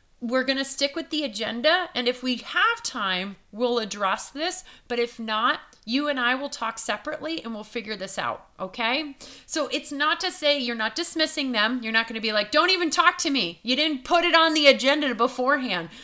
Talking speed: 215 wpm